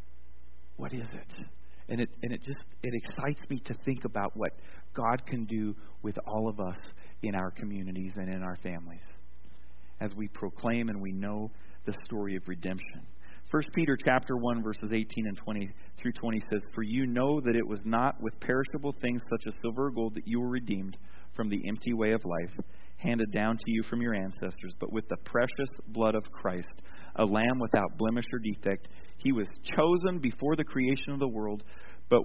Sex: male